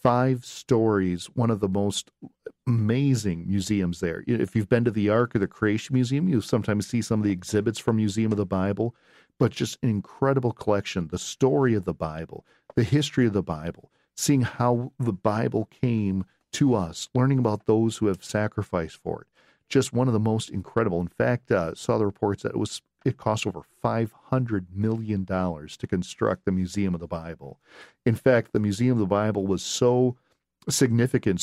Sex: male